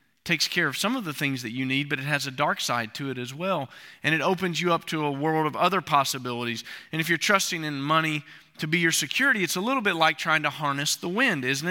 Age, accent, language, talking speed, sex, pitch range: 40-59, American, English, 265 wpm, male, 140-195 Hz